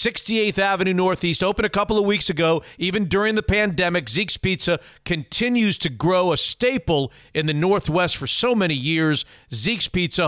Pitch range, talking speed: 160-215 Hz, 170 wpm